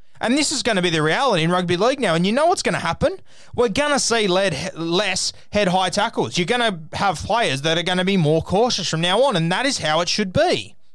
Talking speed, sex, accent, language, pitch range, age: 265 wpm, male, Australian, English, 150-200 Hz, 20-39